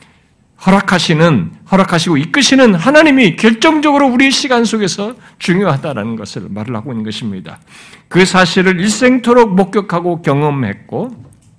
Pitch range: 145-205 Hz